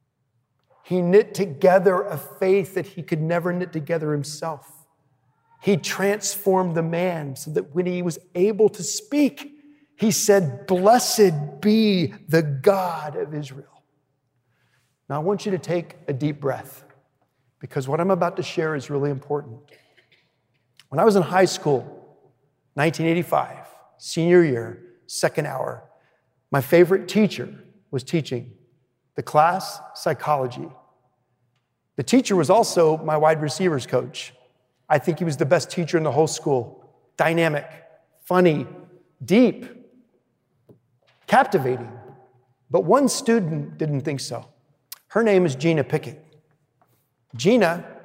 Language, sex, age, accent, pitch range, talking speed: English, male, 40-59, American, 135-185 Hz, 130 wpm